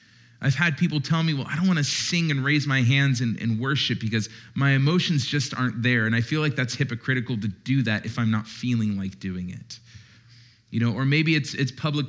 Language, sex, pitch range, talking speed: English, male, 120-155 Hz, 235 wpm